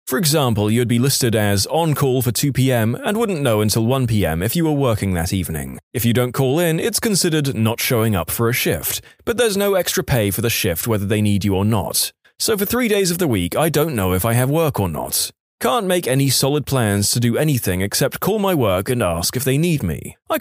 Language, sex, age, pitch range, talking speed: English, male, 20-39, 110-165 Hz, 245 wpm